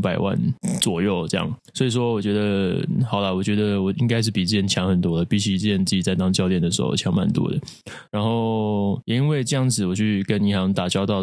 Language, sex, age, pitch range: Chinese, male, 20-39, 95-115 Hz